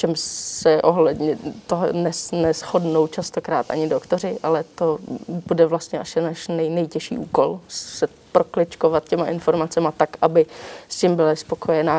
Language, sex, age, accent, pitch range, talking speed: Czech, female, 20-39, native, 165-195 Hz, 135 wpm